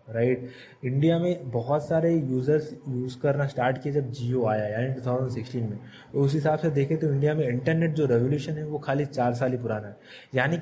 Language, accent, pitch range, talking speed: Hindi, native, 125-155 Hz, 210 wpm